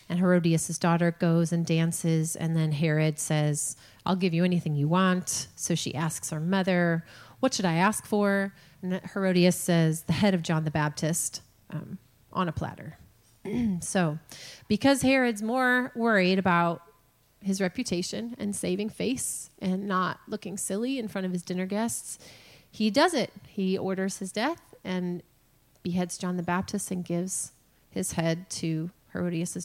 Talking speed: 160 wpm